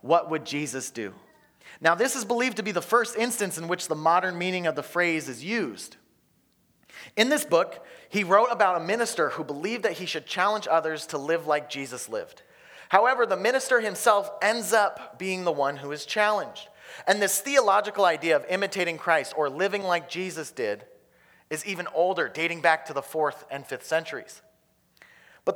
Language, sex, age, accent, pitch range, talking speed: English, male, 30-49, American, 160-210 Hz, 185 wpm